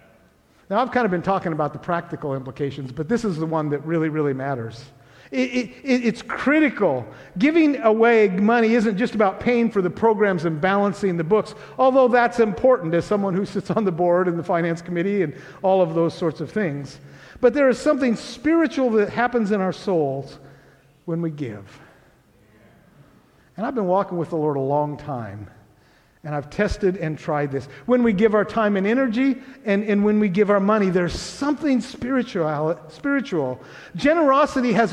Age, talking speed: 50-69, 180 wpm